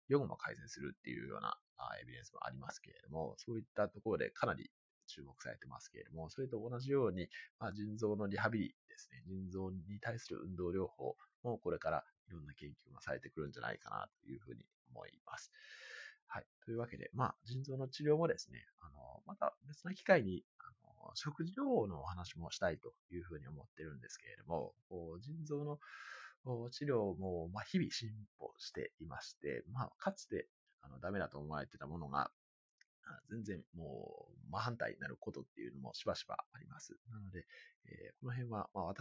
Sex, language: male, Japanese